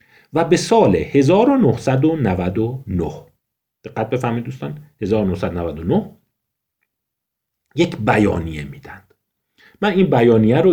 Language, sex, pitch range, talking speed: Persian, male, 100-165 Hz, 75 wpm